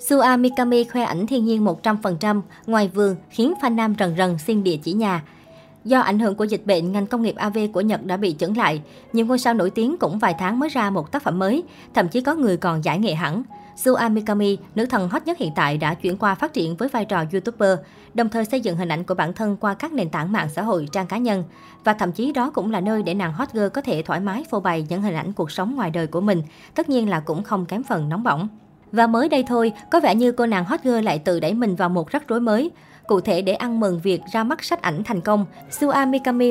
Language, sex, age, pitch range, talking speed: Vietnamese, male, 20-39, 185-240 Hz, 265 wpm